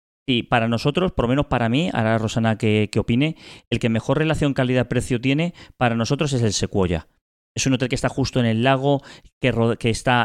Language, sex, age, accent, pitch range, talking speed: Spanish, male, 30-49, Spanish, 110-135 Hz, 215 wpm